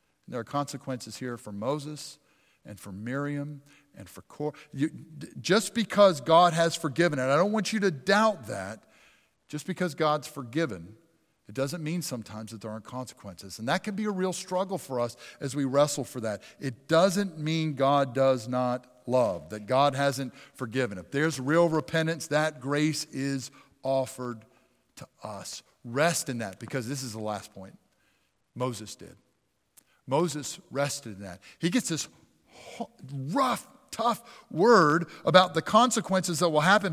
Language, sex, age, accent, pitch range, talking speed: English, male, 50-69, American, 125-170 Hz, 160 wpm